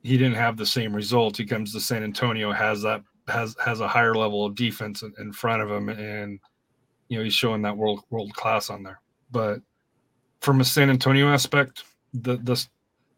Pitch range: 115-130 Hz